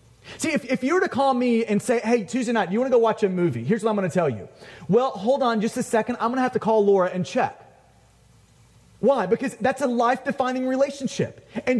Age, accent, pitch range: 30-49, American, 205-265 Hz